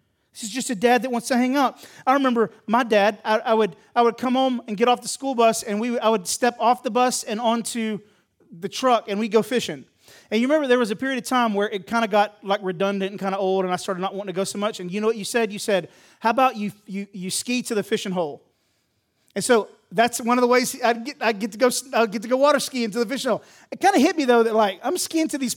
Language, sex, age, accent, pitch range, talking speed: English, male, 30-49, American, 185-240 Hz, 285 wpm